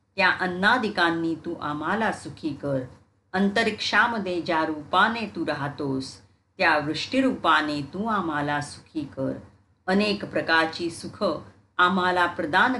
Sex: female